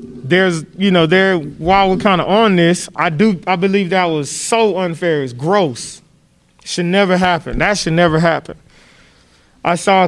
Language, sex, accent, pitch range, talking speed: English, male, American, 145-175 Hz, 180 wpm